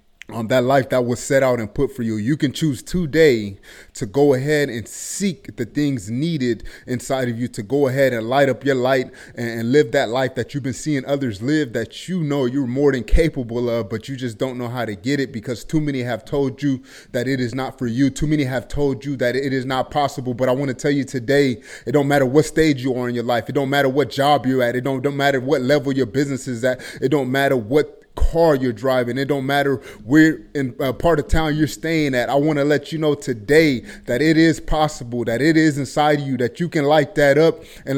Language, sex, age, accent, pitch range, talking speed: English, male, 30-49, American, 130-150 Hz, 255 wpm